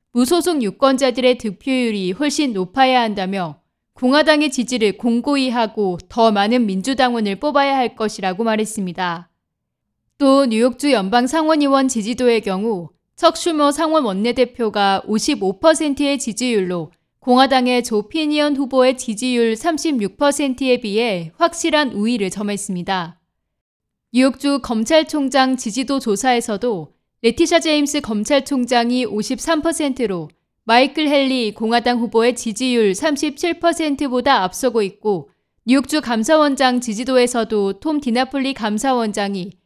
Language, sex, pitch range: Korean, female, 215-280 Hz